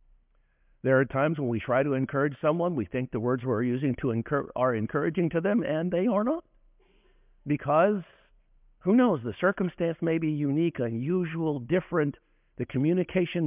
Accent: American